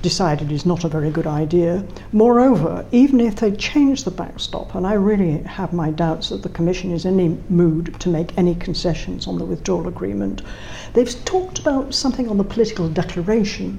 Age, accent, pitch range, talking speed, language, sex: 60-79, British, 165-220 Hz, 185 wpm, English, female